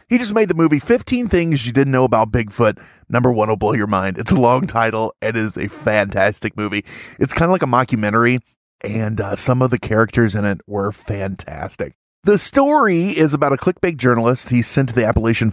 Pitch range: 105-145 Hz